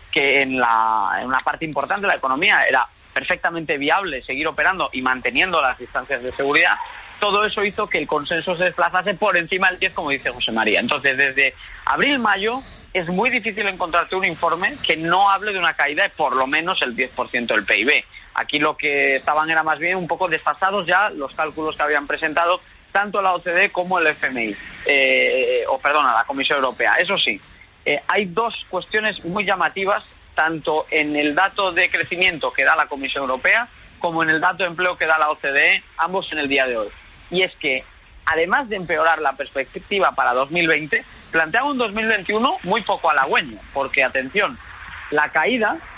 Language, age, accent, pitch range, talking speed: Spanish, 30-49, Spanish, 150-200 Hz, 185 wpm